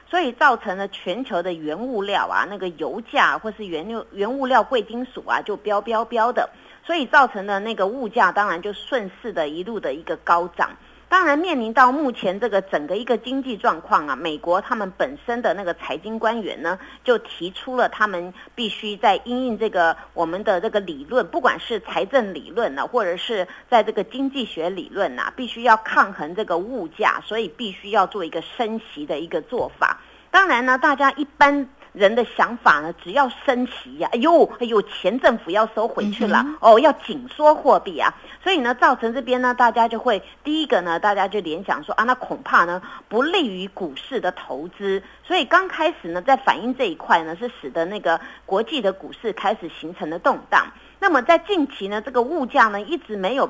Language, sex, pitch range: Chinese, female, 200-270 Hz